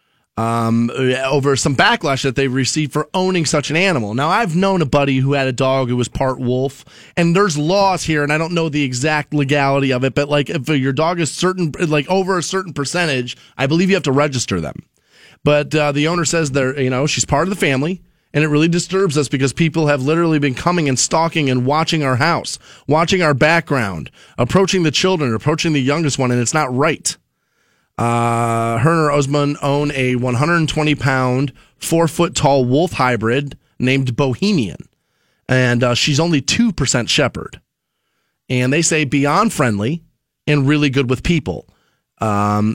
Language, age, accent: English, 30-49, American